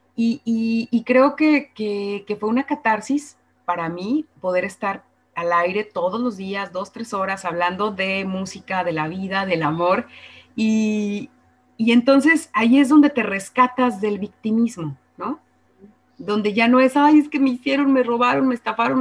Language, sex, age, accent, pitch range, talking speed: Spanish, female, 30-49, Mexican, 180-230 Hz, 170 wpm